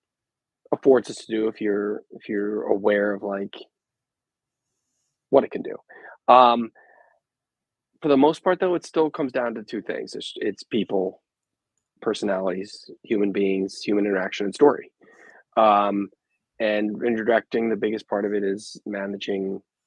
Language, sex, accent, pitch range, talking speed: English, male, American, 100-120 Hz, 145 wpm